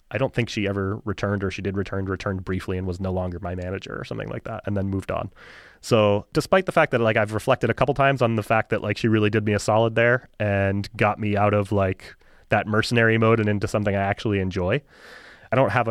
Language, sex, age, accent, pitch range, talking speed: English, male, 30-49, American, 100-120 Hz, 255 wpm